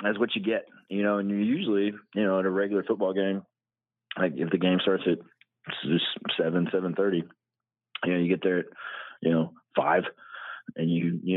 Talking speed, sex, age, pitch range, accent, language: 190 wpm, male, 30-49, 95-100 Hz, American, English